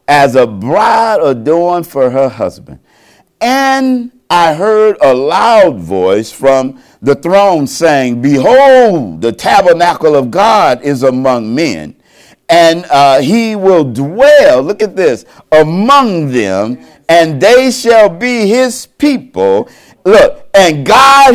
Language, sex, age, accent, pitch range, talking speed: English, male, 50-69, American, 170-270 Hz, 125 wpm